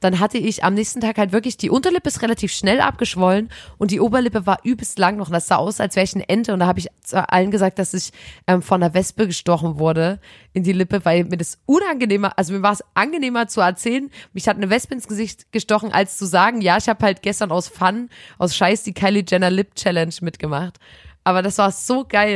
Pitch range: 185-220 Hz